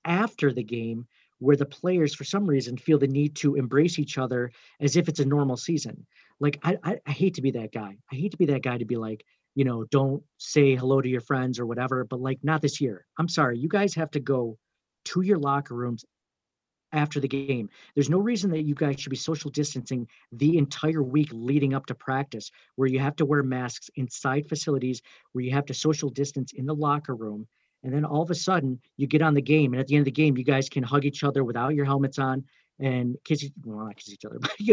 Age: 40-59